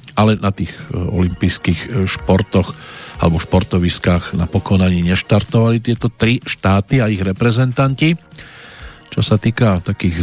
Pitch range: 95-115 Hz